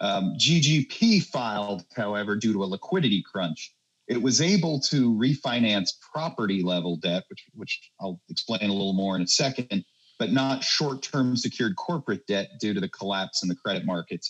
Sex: male